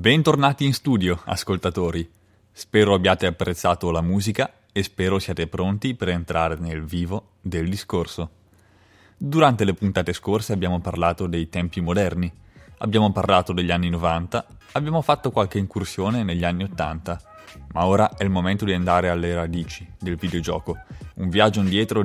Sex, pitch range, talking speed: male, 85-100 Hz, 145 wpm